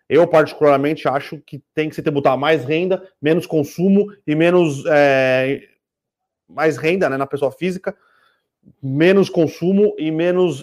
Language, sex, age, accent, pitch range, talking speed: Portuguese, male, 30-49, Brazilian, 145-170 Hz, 140 wpm